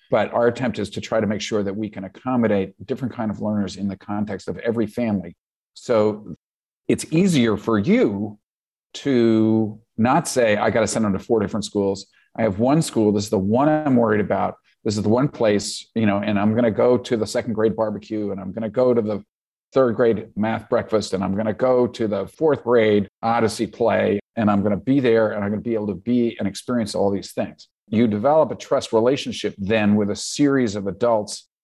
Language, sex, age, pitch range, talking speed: English, male, 50-69, 105-120 Hz, 230 wpm